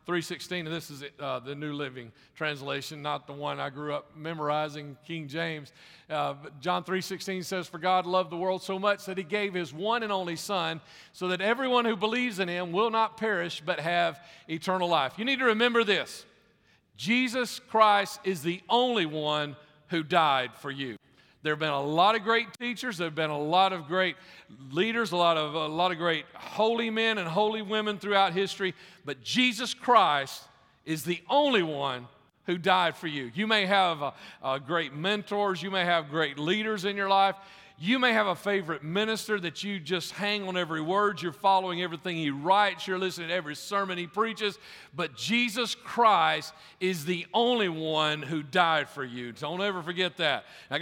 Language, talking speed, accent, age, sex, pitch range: English, 190 wpm, American, 50-69, male, 160-205 Hz